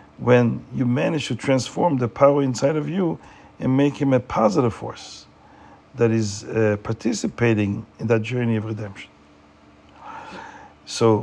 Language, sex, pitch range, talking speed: Hebrew, male, 105-140 Hz, 140 wpm